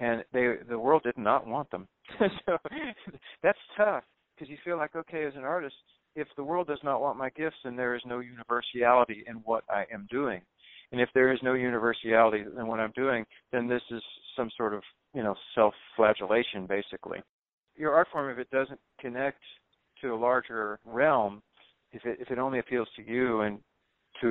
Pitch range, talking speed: 105-135 Hz, 195 wpm